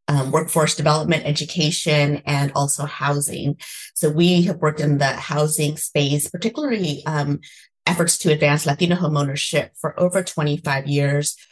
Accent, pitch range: American, 145-165 Hz